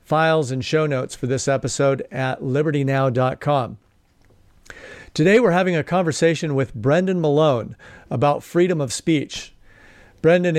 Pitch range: 130-160 Hz